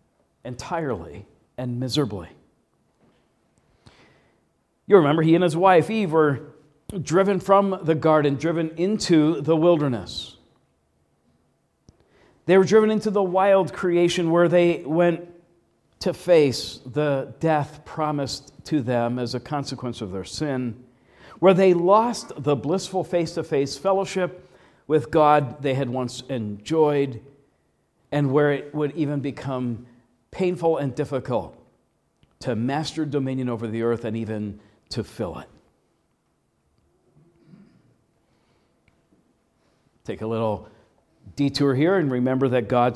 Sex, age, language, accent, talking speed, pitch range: male, 50-69, English, American, 115 wpm, 130-175 Hz